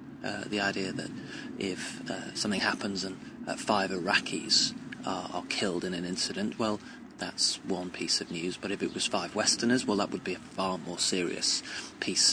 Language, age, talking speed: English, 30-49, 190 wpm